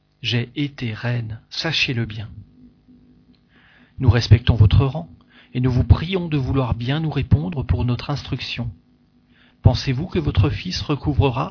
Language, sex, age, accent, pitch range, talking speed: French, male, 40-59, French, 115-145 Hz, 135 wpm